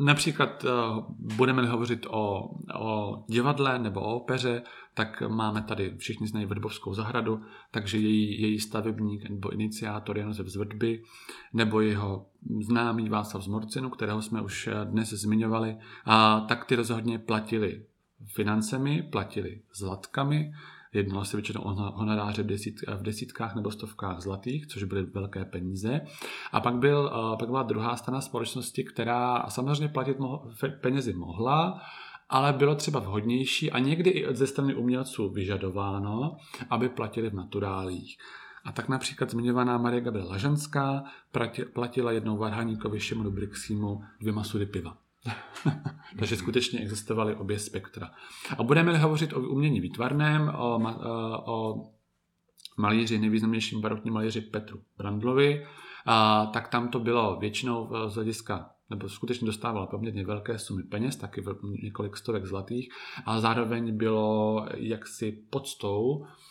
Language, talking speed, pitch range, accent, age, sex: Czech, 125 wpm, 105-125 Hz, native, 40-59, male